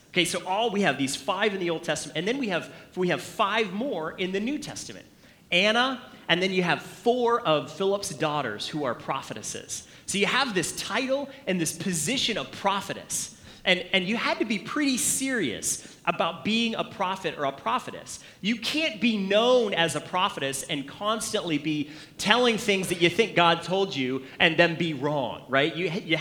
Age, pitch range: 30-49, 155-215 Hz